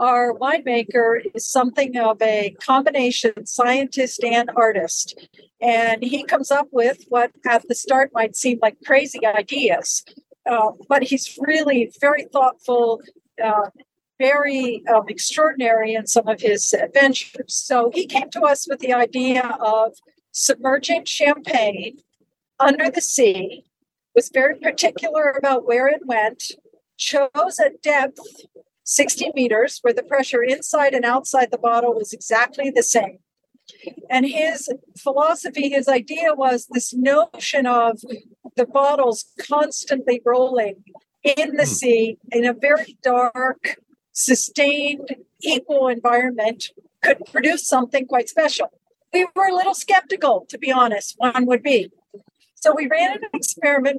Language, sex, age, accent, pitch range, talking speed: English, female, 50-69, American, 240-290 Hz, 135 wpm